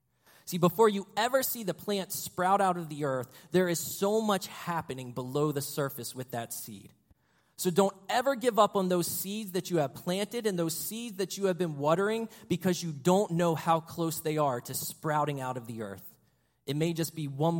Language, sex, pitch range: English, male, 135-185 Hz